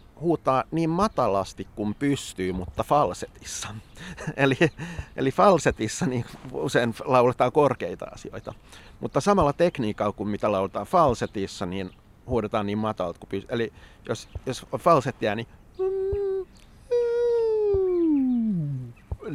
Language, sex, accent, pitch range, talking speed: Finnish, male, native, 100-140 Hz, 105 wpm